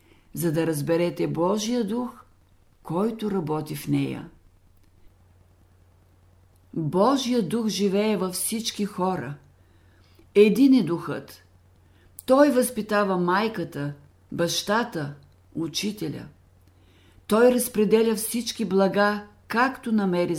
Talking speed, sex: 85 wpm, female